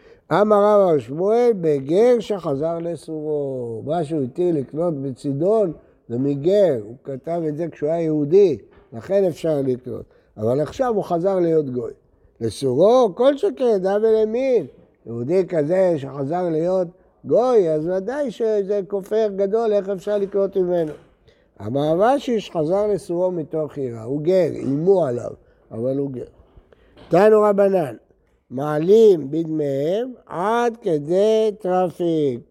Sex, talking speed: male, 125 wpm